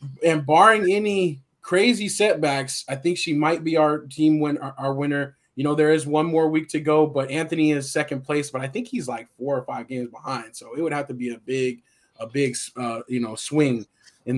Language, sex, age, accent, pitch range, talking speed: English, male, 20-39, American, 130-160 Hz, 225 wpm